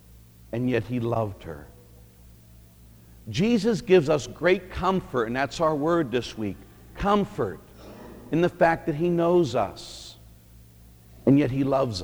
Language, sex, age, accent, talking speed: English, male, 60-79, American, 140 wpm